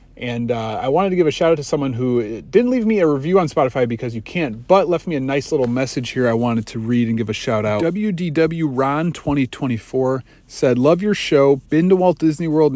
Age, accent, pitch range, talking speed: 40-59, American, 115-145 Hz, 240 wpm